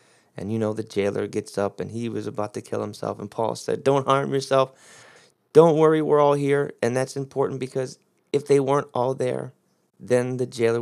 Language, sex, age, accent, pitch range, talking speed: English, male, 30-49, American, 110-140 Hz, 205 wpm